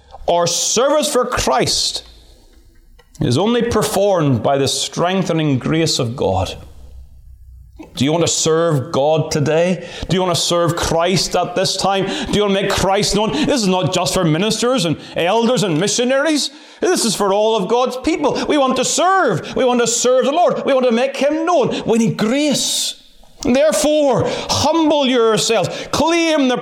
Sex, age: male, 30-49